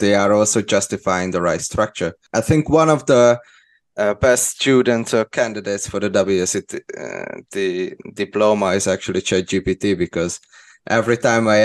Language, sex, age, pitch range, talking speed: English, male, 20-39, 95-115 Hz, 160 wpm